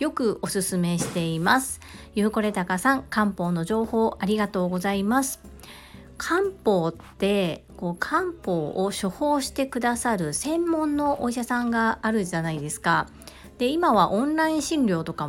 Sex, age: female, 40-59